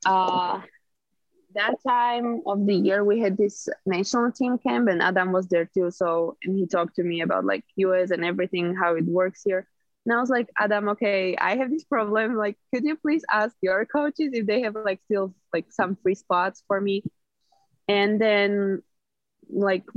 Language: English